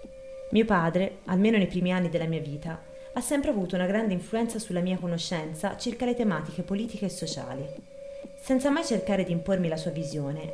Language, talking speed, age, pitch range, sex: Italian, 180 wpm, 20-39, 170-260 Hz, female